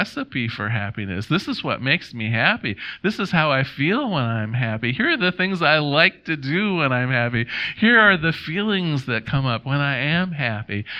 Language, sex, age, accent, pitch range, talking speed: English, male, 50-69, American, 120-170 Hz, 215 wpm